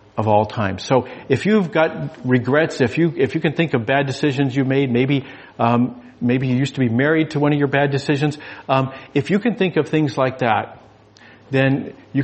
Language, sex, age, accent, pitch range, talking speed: English, male, 50-69, American, 115-145 Hz, 215 wpm